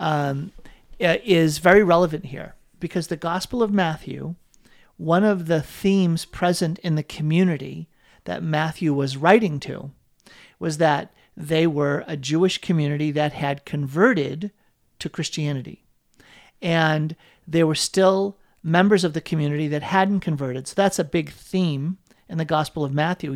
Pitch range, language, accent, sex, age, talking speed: 150-190 Hz, English, American, male, 50-69, 145 wpm